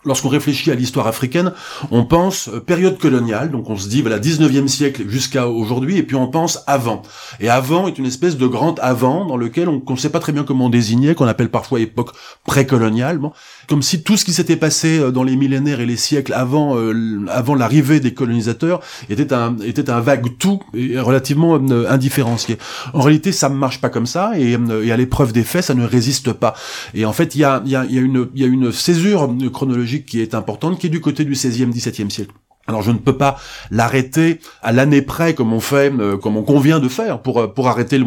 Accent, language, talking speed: French, French, 220 wpm